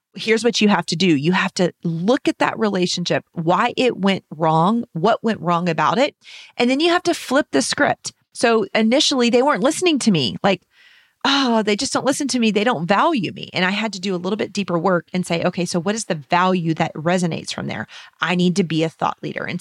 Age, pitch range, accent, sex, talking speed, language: 30-49, 175-245 Hz, American, female, 240 wpm, English